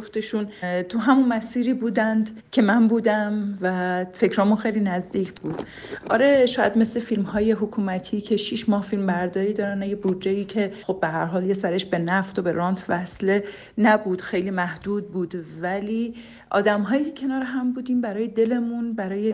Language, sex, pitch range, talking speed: Persian, female, 185-220 Hz, 165 wpm